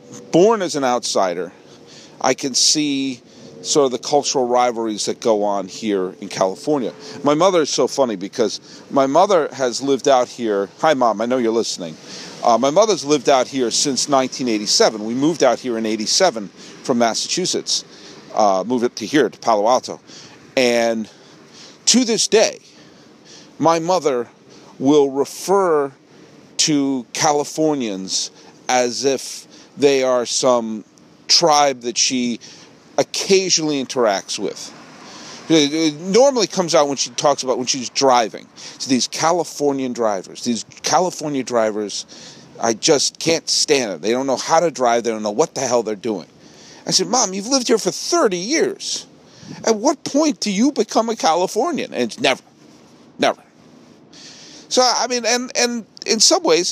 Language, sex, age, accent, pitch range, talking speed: English, male, 50-69, American, 120-185 Hz, 155 wpm